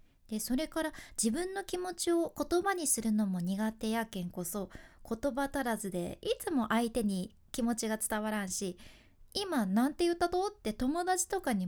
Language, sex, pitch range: Japanese, female, 215-320 Hz